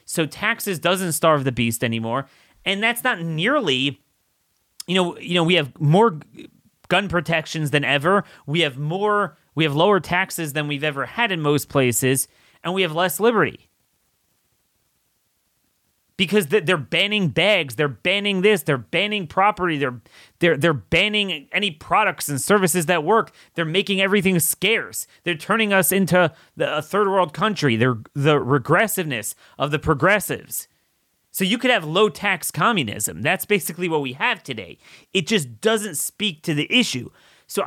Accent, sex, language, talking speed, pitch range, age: American, male, English, 160 wpm, 145-195 Hz, 30-49